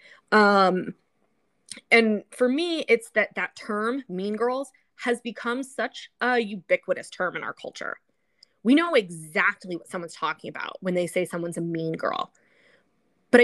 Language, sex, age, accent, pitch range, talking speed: English, female, 20-39, American, 185-250 Hz, 150 wpm